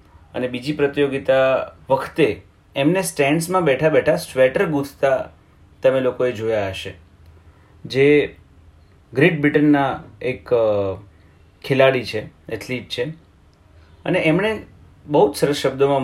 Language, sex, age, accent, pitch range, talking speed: Hindi, male, 30-49, native, 105-155 Hz, 95 wpm